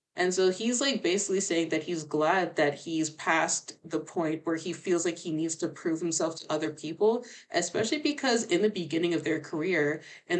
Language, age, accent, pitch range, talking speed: English, 20-39, American, 155-175 Hz, 200 wpm